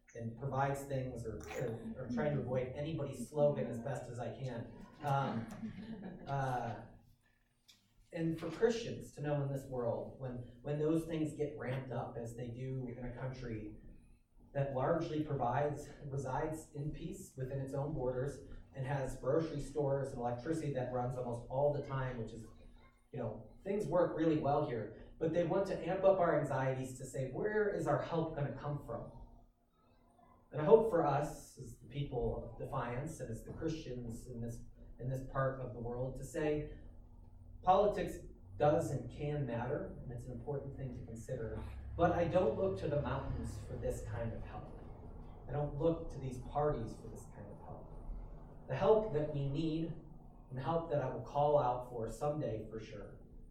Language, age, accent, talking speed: English, 30-49, American, 180 wpm